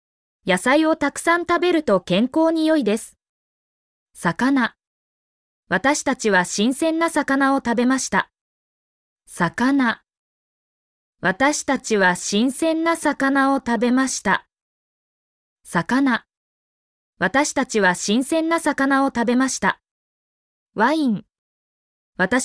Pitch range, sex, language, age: 225-300 Hz, female, Chinese, 20-39